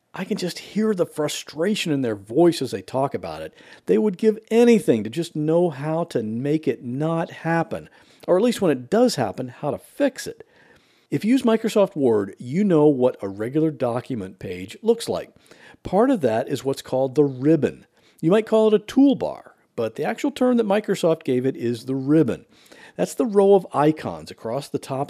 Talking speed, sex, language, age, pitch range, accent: 205 wpm, male, English, 50-69, 130-210 Hz, American